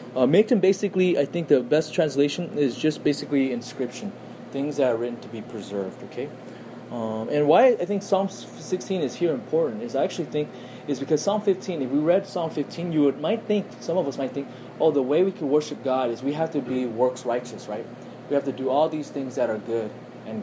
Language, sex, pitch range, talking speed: English, male, 125-170 Hz, 230 wpm